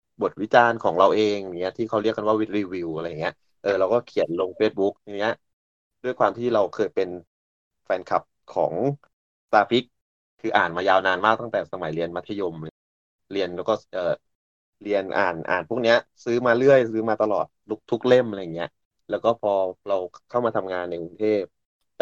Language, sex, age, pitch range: Thai, male, 20-39, 90-115 Hz